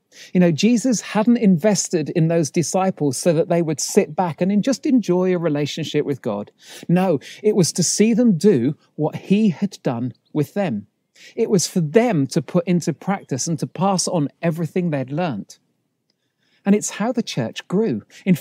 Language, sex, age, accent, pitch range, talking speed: English, male, 40-59, British, 155-205 Hz, 185 wpm